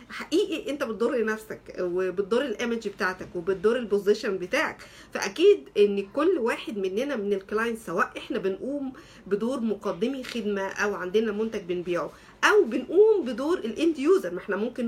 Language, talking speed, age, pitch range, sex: Arabic, 140 wpm, 50-69, 210-275 Hz, female